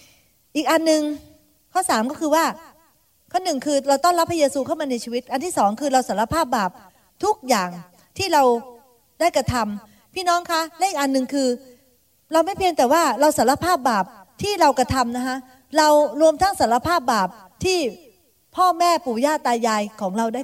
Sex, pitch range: female, 225-300 Hz